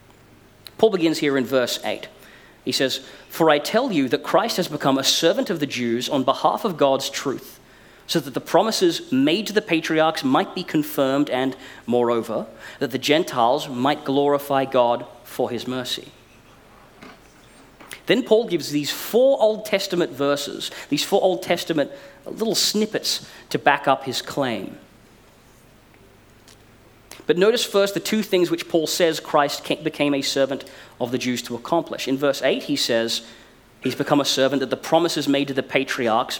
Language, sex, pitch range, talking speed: English, male, 125-165 Hz, 165 wpm